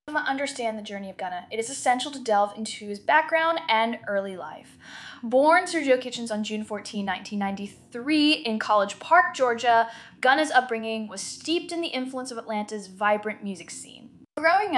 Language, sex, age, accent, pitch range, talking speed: English, female, 10-29, American, 205-275 Hz, 160 wpm